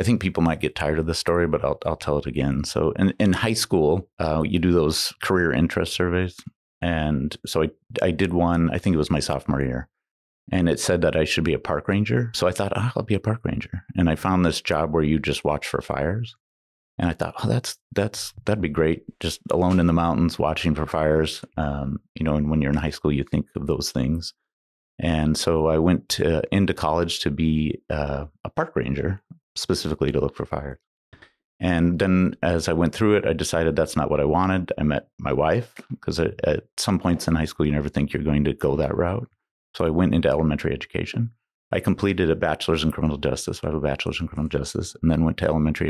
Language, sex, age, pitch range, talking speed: English, male, 30-49, 75-95 Hz, 235 wpm